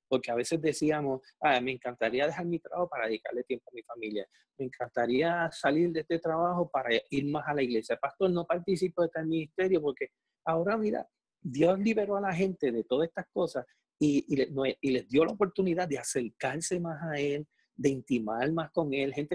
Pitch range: 130-165 Hz